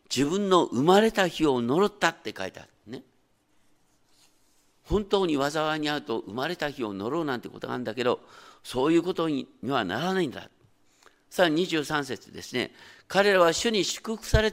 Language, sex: Japanese, male